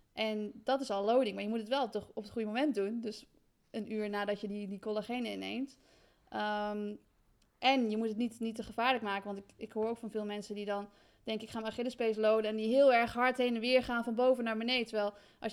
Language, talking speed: Dutch, 260 wpm